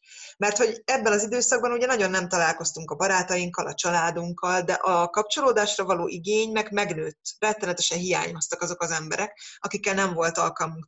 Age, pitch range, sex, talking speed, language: 20-39, 170-220 Hz, female, 160 wpm, Hungarian